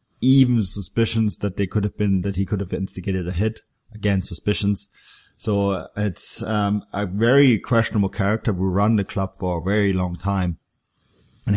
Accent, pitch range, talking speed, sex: German, 90-105 Hz, 170 wpm, male